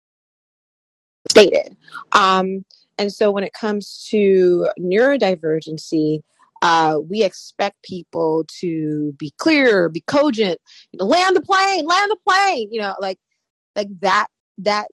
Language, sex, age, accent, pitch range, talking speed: English, female, 30-49, American, 165-205 Hz, 130 wpm